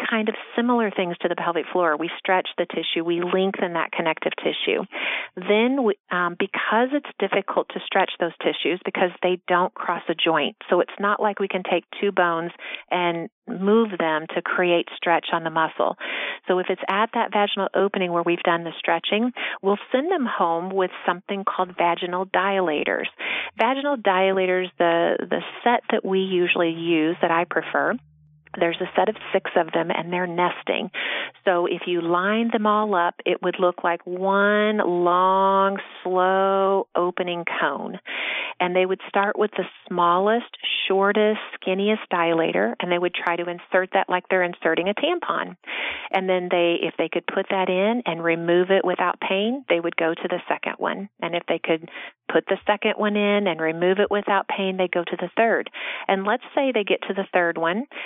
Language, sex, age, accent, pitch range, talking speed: English, female, 40-59, American, 175-205 Hz, 185 wpm